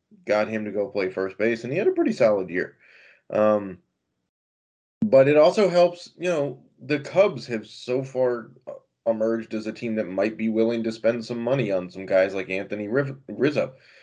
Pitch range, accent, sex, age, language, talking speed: 105-135 Hz, American, male, 20-39, English, 190 wpm